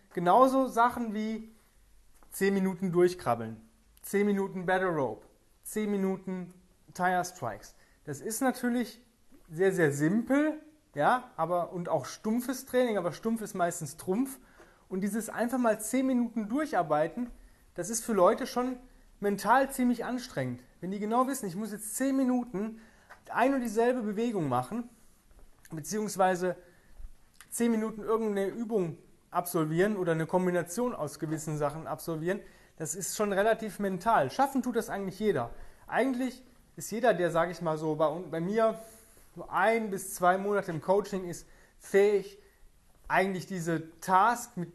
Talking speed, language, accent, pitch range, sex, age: 145 wpm, German, German, 170-225 Hz, male, 30-49